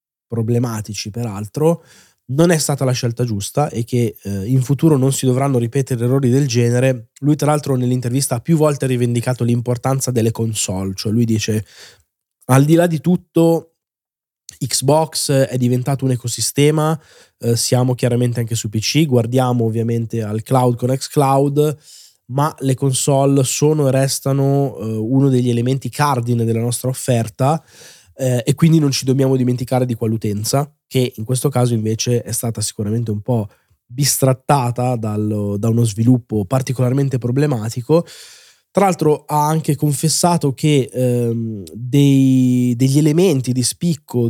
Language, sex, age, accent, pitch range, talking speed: Italian, male, 20-39, native, 120-145 Hz, 150 wpm